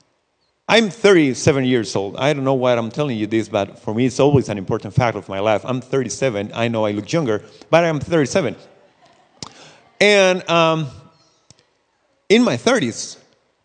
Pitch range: 115-150 Hz